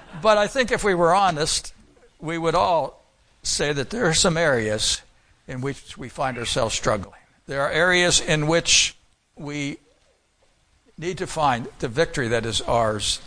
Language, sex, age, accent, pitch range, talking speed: English, male, 60-79, American, 135-165 Hz, 165 wpm